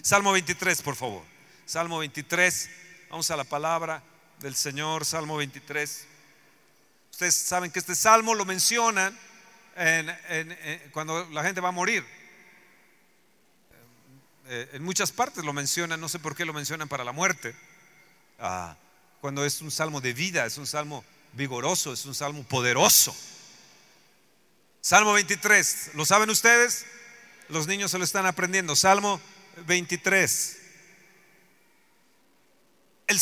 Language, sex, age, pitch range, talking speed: Spanish, male, 50-69, 165-220 Hz, 130 wpm